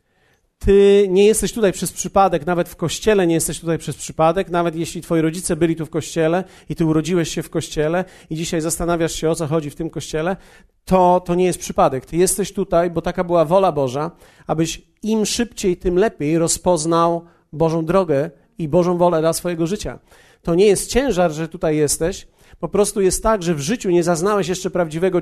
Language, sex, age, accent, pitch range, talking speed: Polish, male, 40-59, native, 155-185 Hz, 195 wpm